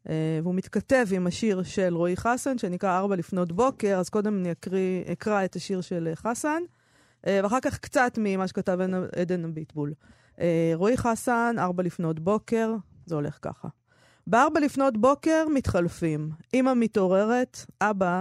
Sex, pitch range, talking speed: female, 175-235 Hz, 150 wpm